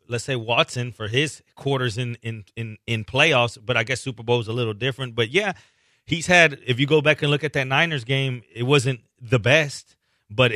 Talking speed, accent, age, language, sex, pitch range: 215 wpm, American, 30-49, English, male, 115-140 Hz